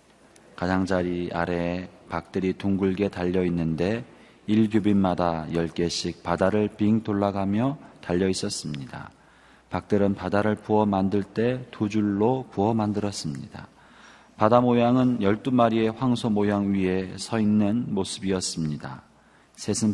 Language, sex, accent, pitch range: Korean, male, native, 90-110 Hz